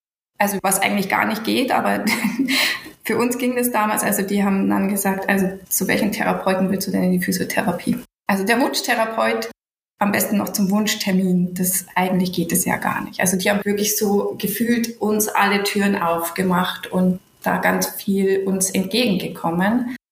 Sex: female